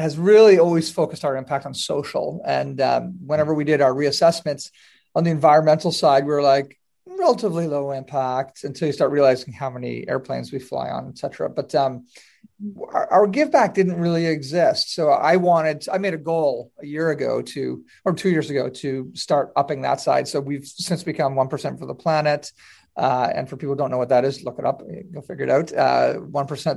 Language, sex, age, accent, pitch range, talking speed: English, male, 40-59, American, 135-170 Hz, 205 wpm